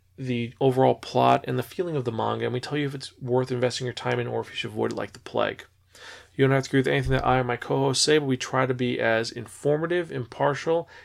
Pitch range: 120-145 Hz